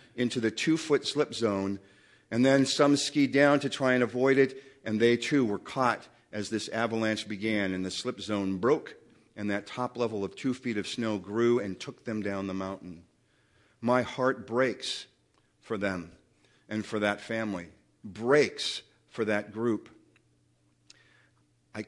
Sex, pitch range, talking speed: male, 95-125 Hz, 160 wpm